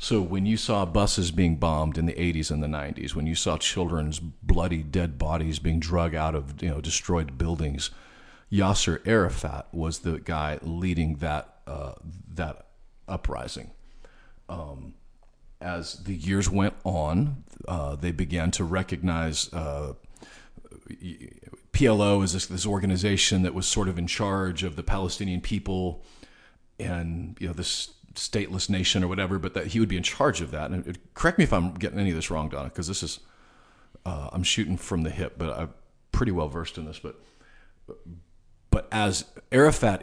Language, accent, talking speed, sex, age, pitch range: English, American, 170 wpm, male, 40-59, 80-95 Hz